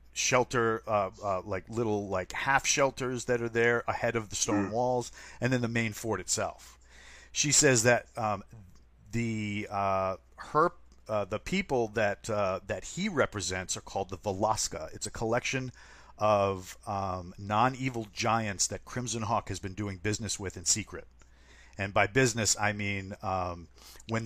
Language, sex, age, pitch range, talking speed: English, male, 40-59, 95-120 Hz, 160 wpm